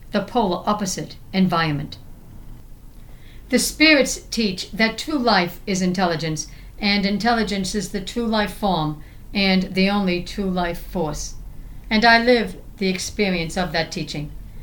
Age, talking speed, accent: 60-79, 135 wpm, American